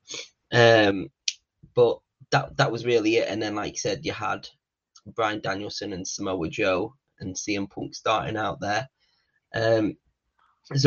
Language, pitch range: English, 110-135 Hz